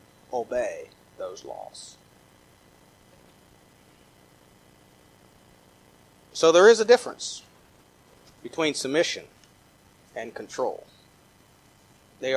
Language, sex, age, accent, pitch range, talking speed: English, male, 40-59, American, 110-150 Hz, 65 wpm